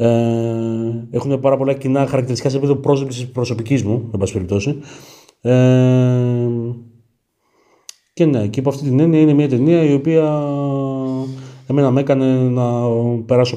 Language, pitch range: Greek, 110-135 Hz